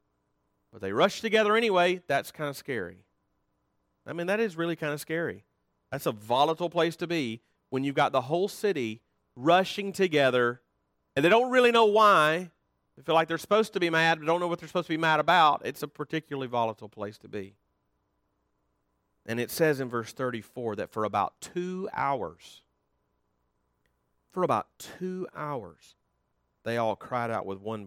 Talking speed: 175 wpm